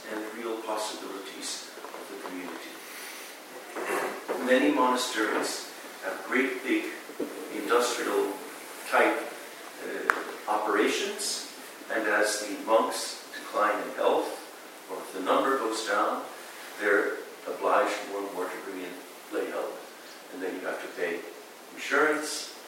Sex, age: male, 50-69